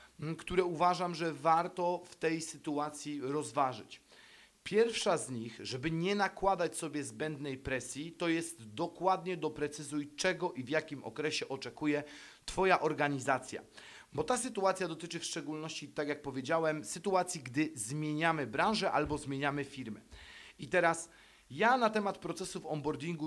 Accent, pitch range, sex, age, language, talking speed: native, 135-165 Hz, male, 40-59, Polish, 135 wpm